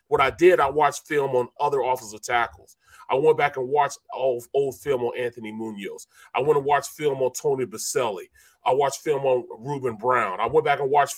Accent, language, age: American, English, 30-49